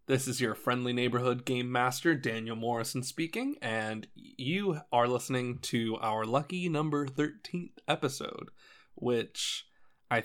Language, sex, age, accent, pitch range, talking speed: English, male, 20-39, American, 115-145 Hz, 130 wpm